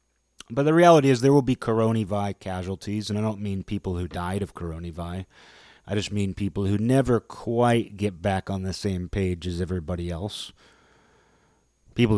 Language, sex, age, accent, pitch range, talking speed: English, male, 30-49, American, 90-105 Hz, 170 wpm